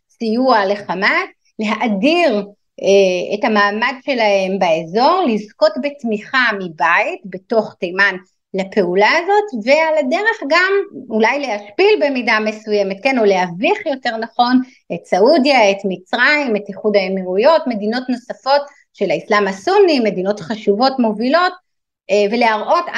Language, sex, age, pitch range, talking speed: Hebrew, female, 30-49, 200-270 Hz, 115 wpm